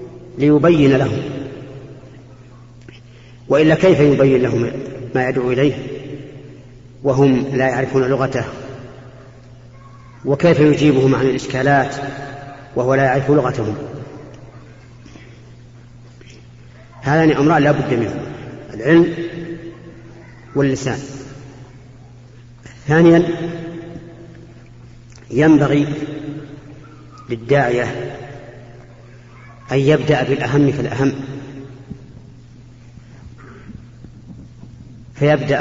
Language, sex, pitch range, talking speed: Arabic, female, 120-140 Hz, 65 wpm